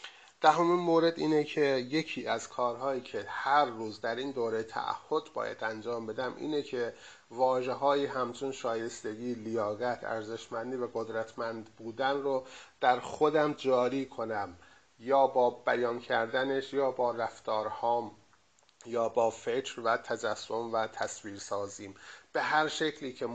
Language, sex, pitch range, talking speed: Persian, male, 115-145 Hz, 135 wpm